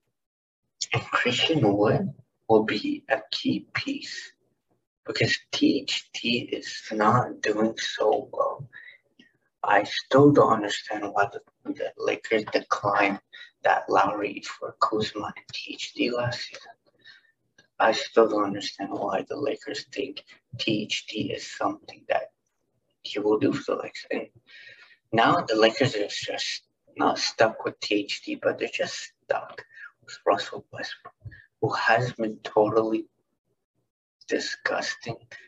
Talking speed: 120 wpm